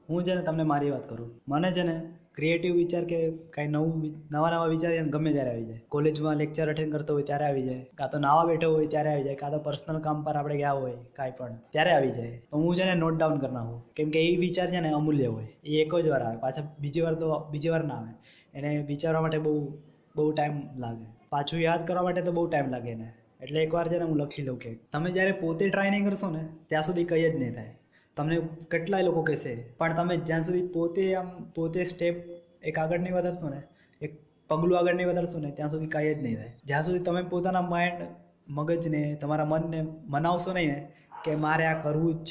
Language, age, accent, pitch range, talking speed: Gujarati, 20-39, native, 145-170 Hz, 150 wpm